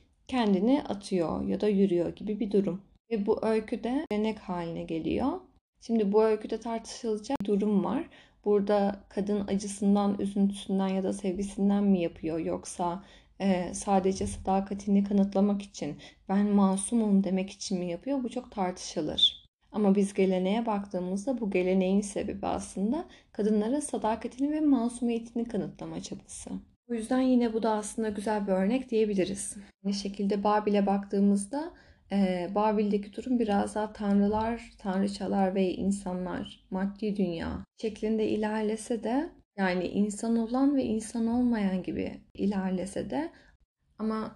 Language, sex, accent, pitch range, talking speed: Turkish, female, native, 195-225 Hz, 130 wpm